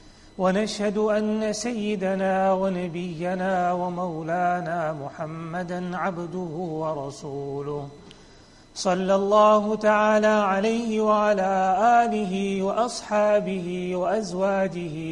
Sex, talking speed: male, 65 wpm